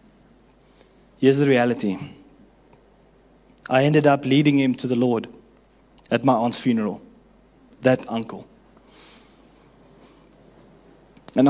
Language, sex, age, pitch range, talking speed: English, male, 20-39, 130-155 Hz, 95 wpm